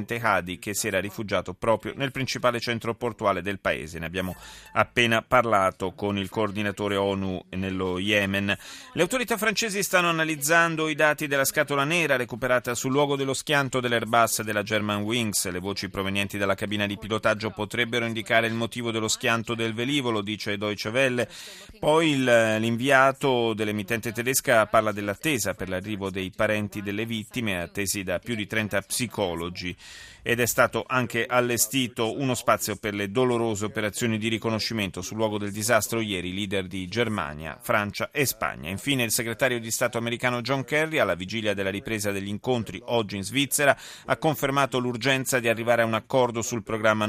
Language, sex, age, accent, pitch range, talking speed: Italian, male, 30-49, native, 100-125 Hz, 160 wpm